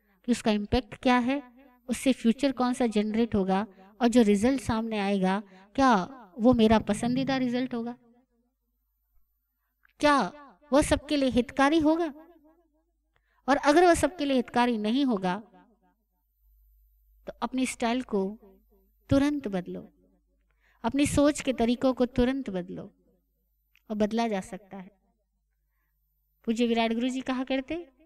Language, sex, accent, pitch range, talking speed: Hindi, female, native, 200-265 Hz, 125 wpm